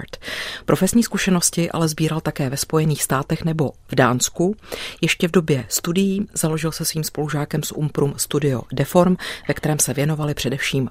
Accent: native